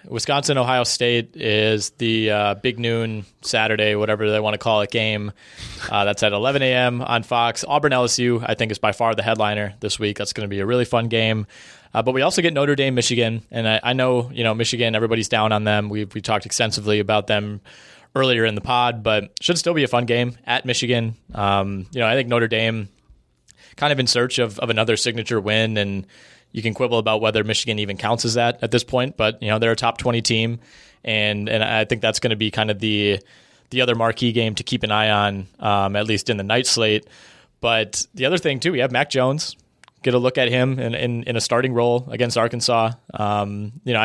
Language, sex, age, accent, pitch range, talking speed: English, male, 20-39, American, 110-125 Hz, 230 wpm